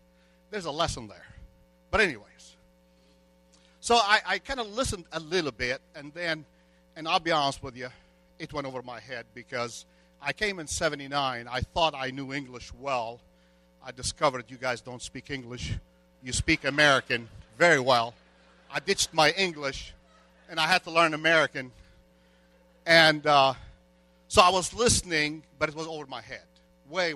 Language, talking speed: English, 160 wpm